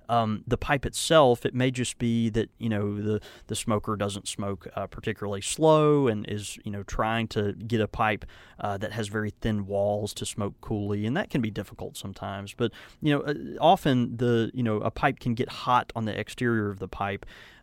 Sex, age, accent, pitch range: male, 30-49, American, 105-125 Hz